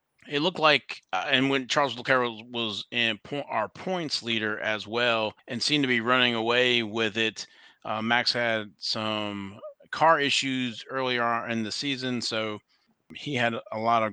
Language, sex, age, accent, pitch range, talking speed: English, male, 30-49, American, 110-130 Hz, 170 wpm